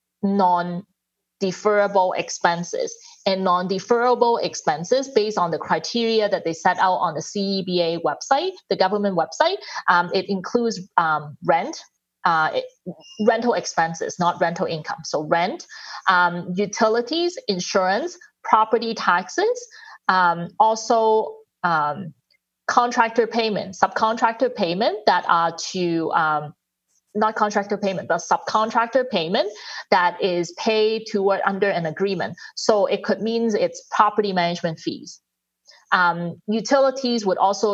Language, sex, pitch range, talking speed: English, female, 180-235 Hz, 120 wpm